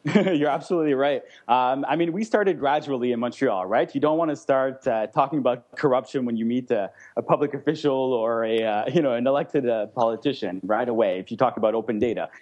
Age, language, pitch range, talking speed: 20-39, English, 115-150 Hz, 220 wpm